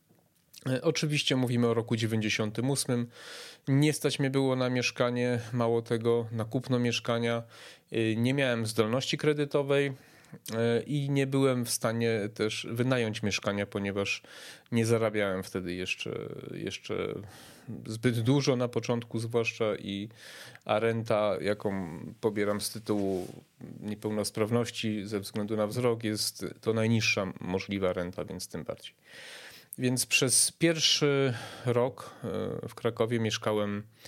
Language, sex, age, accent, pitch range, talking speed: Polish, male, 30-49, native, 105-125 Hz, 115 wpm